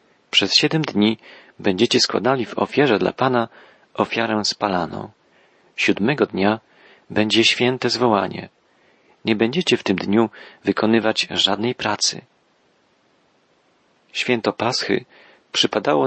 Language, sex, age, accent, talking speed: Polish, male, 40-59, native, 100 wpm